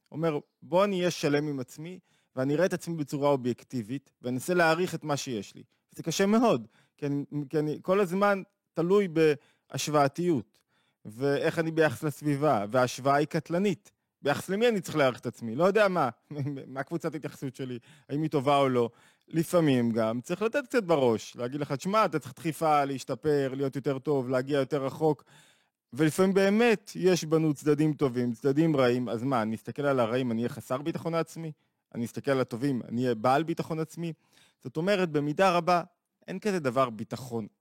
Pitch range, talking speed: 130-165 Hz, 175 wpm